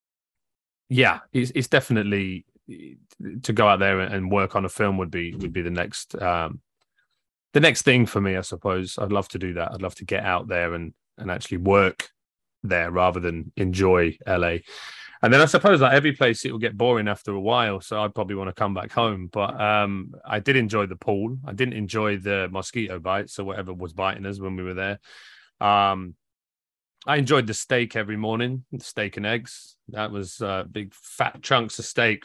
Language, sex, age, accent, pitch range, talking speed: English, male, 30-49, British, 95-110 Hz, 205 wpm